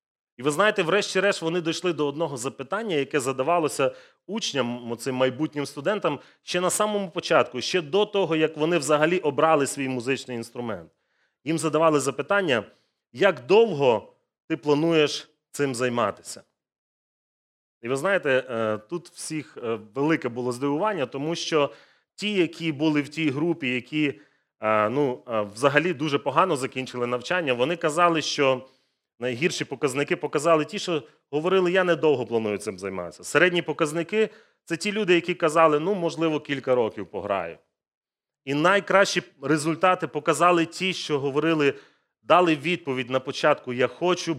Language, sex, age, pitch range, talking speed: Ukrainian, male, 30-49, 130-170 Hz, 135 wpm